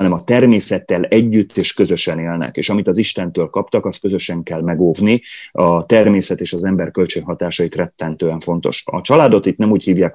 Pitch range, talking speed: 85-110 Hz, 175 wpm